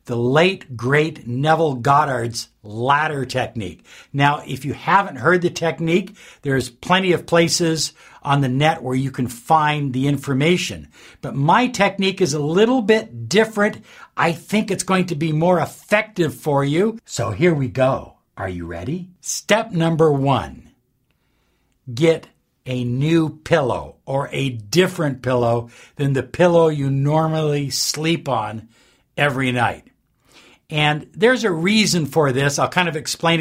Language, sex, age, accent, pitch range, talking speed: English, male, 60-79, American, 135-175 Hz, 145 wpm